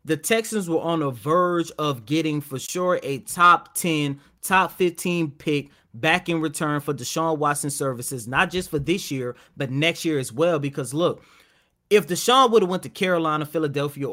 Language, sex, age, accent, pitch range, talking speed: English, male, 30-49, American, 145-190 Hz, 185 wpm